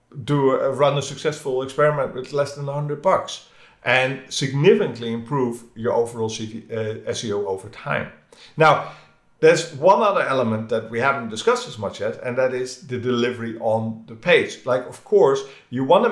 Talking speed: 165 wpm